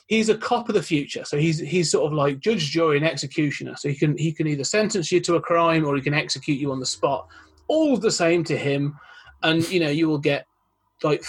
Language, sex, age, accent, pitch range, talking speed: English, male, 30-49, British, 145-185 Hz, 250 wpm